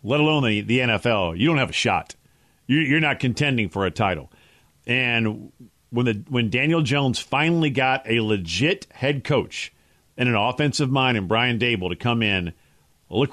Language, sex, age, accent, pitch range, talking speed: English, male, 50-69, American, 115-150 Hz, 175 wpm